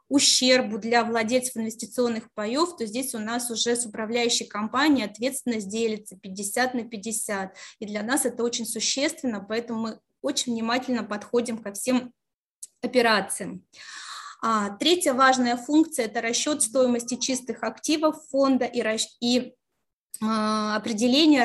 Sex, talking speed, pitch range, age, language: female, 130 wpm, 225-260 Hz, 20-39, Russian